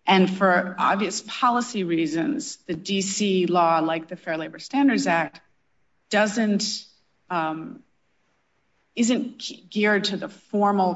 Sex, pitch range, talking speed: female, 170-205 Hz, 115 wpm